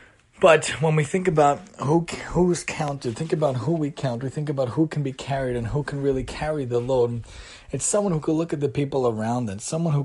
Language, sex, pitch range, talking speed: English, male, 115-145 Hz, 235 wpm